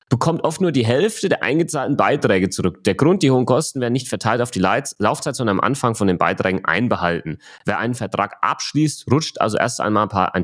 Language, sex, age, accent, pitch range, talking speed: German, male, 30-49, German, 100-125 Hz, 225 wpm